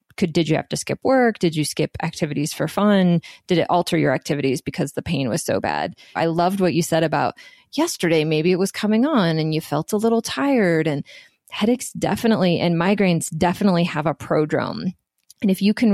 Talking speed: 205 wpm